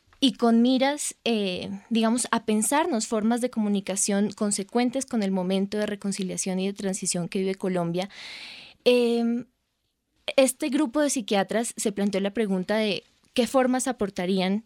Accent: Colombian